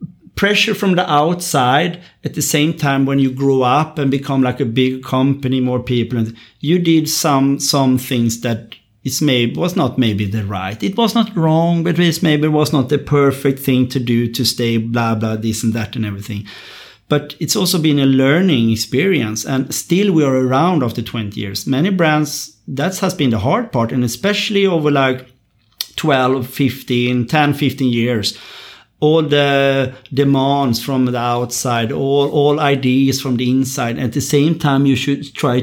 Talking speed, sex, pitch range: 185 wpm, male, 115-145 Hz